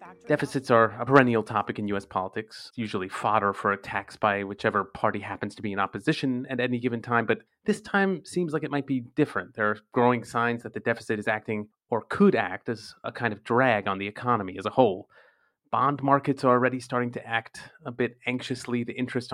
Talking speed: 210 wpm